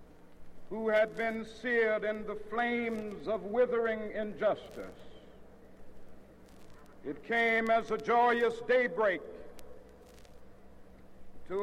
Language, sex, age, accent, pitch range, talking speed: English, male, 60-79, American, 225-245 Hz, 90 wpm